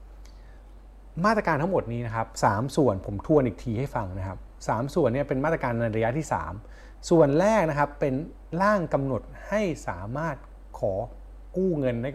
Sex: male